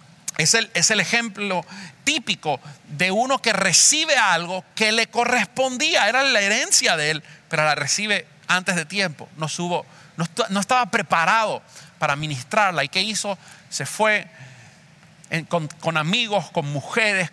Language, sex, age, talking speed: English, male, 40-59, 140 wpm